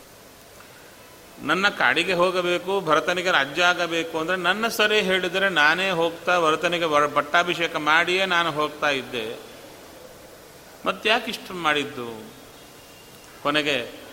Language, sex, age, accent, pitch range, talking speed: Kannada, male, 40-59, native, 135-175 Hz, 90 wpm